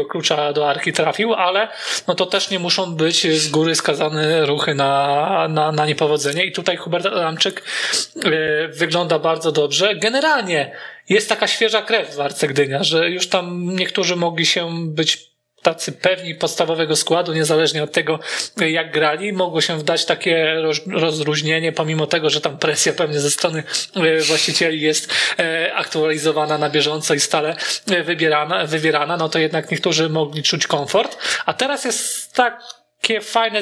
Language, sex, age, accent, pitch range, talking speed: Polish, male, 20-39, native, 155-185 Hz, 150 wpm